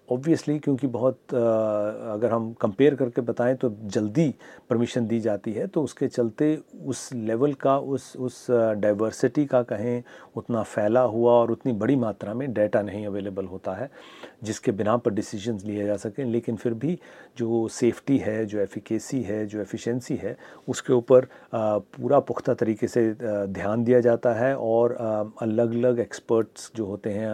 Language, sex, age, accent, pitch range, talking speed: Hindi, male, 40-59, native, 110-125 Hz, 165 wpm